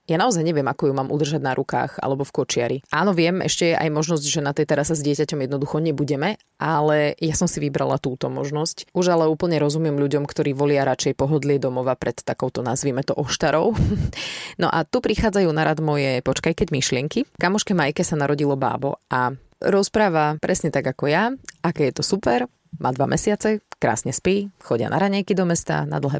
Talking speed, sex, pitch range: 195 wpm, female, 145-185 Hz